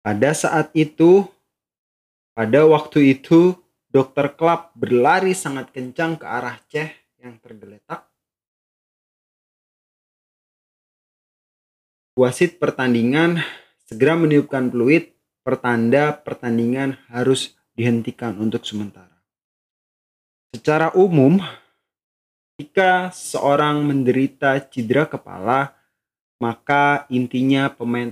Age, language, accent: 30-49, Indonesian, native